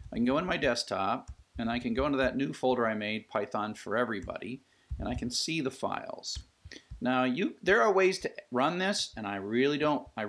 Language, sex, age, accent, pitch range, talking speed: English, male, 50-69, American, 100-130 Hz, 220 wpm